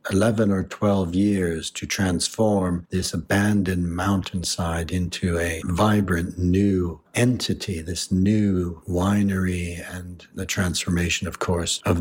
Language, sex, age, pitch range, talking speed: English, male, 60-79, 85-100 Hz, 115 wpm